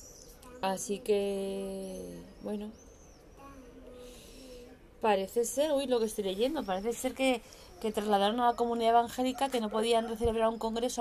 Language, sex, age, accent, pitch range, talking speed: Spanish, female, 20-39, Spanish, 185-240 Hz, 135 wpm